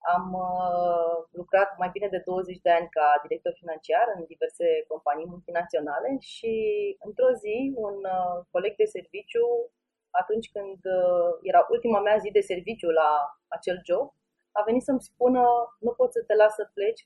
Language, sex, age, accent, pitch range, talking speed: Romanian, female, 30-49, native, 190-275 Hz, 150 wpm